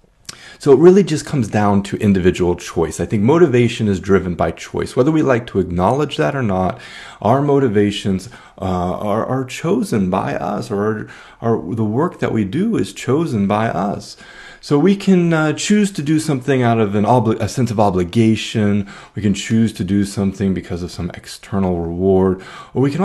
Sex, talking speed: male, 185 wpm